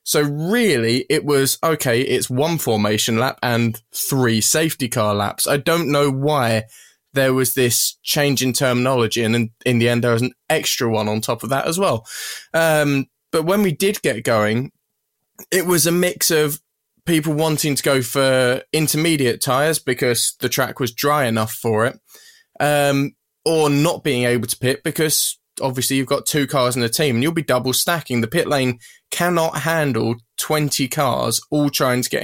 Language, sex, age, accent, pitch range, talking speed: English, male, 20-39, British, 120-155 Hz, 185 wpm